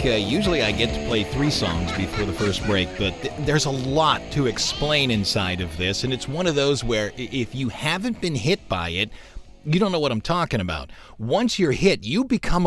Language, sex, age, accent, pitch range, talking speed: English, male, 40-59, American, 110-175 Hz, 220 wpm